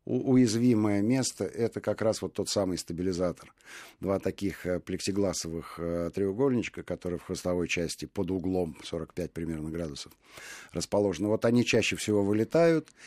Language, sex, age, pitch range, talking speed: Russian, male, 50-69, 95-125 Hz, 130 wpm